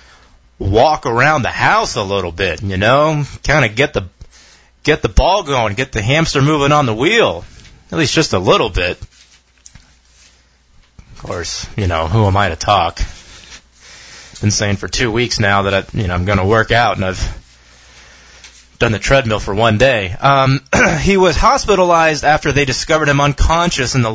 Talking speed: 185 wpm